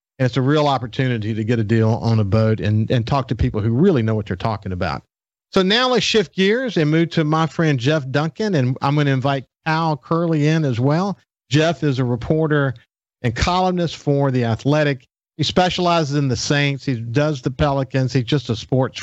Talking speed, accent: 215 wpm, American